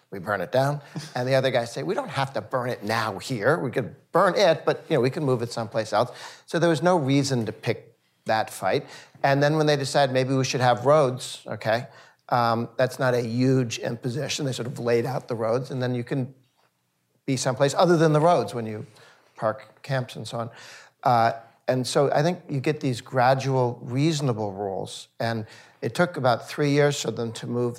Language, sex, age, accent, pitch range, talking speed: English, male, 50-69, American, 115-140 Hz, 220 wpm